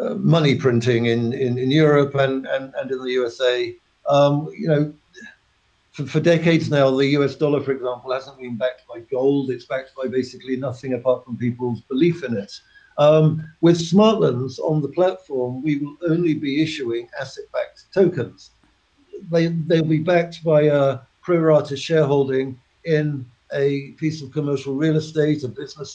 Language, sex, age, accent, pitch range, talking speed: English, male, 60-79, British, 130-155 Hz, 165 wpm